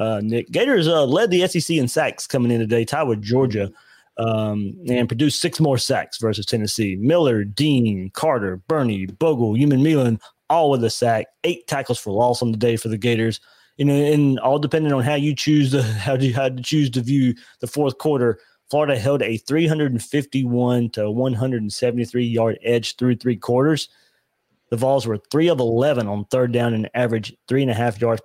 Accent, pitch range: American, 110-140 Hz